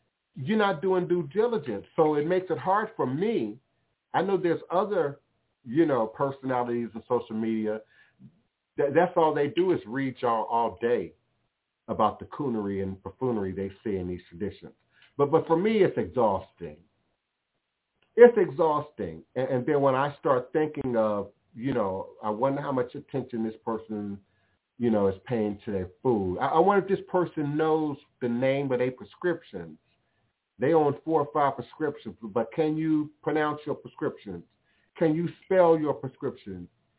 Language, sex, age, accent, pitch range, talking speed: English, male, 50-69, American, 120-170 Hz, 160 wpm